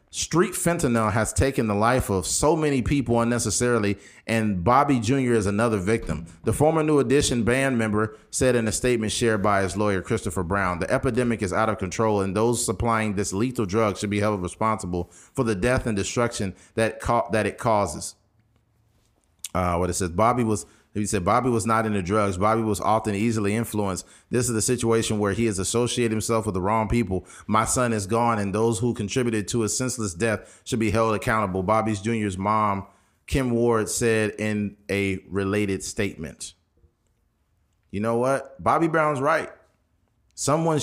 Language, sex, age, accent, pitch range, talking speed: English, male, 30-49, American, 100-120 Hz, 180 wpm